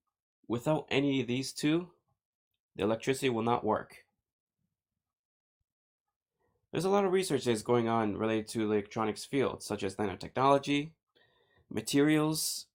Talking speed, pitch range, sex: 125 wpm, 105-130 Hz, male